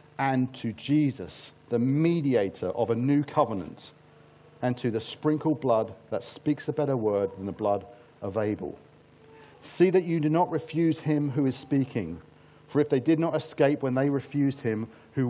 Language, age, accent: English, 40-59, British